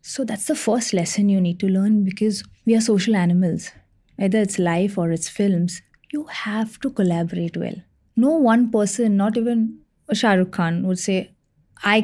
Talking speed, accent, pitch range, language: 180 wpm, Indian, 190-235 Hz, English